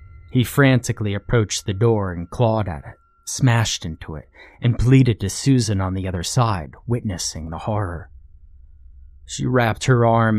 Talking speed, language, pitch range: 155 wpm, English, 80-115 Hz